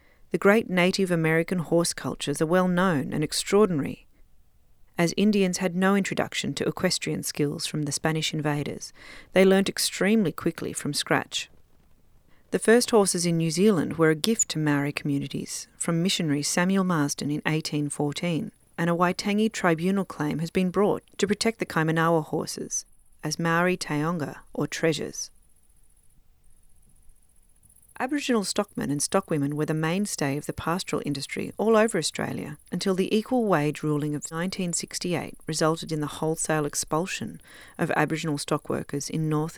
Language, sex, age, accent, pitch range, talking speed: English, female, 40-59, Australian, 150-190 Hz, 145 wpm